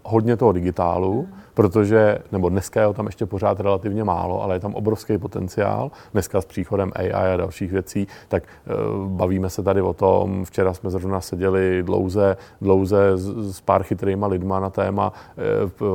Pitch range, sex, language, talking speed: 95-100 Hz, male, Czech, 175 wpm